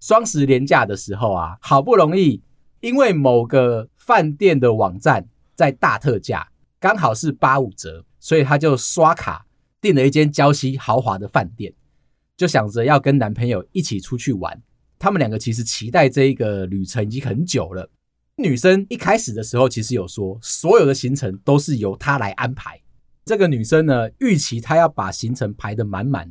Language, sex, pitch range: Chinese, male, 110-150 Hz